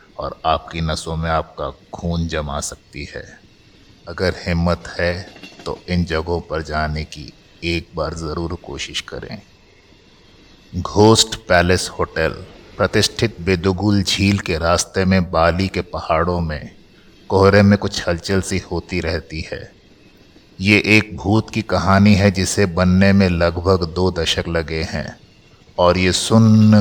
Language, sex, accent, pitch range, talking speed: Hindi, male, native, 85-95 Hz, 135 wpm